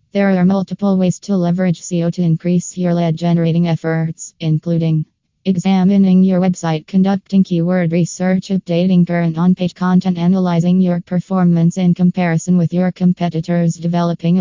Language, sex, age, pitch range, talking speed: English, female, 20-39, 165-180 Hz, 140 wpm